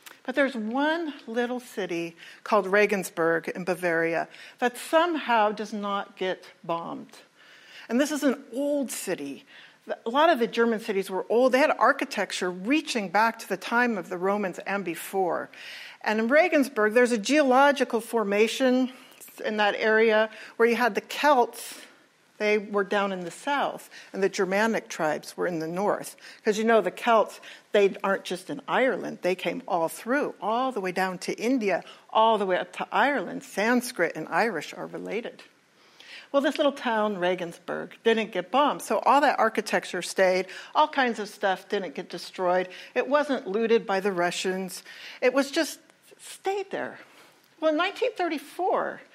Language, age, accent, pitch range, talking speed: English, 60-79, American, 190-260 Hz, 165 wpm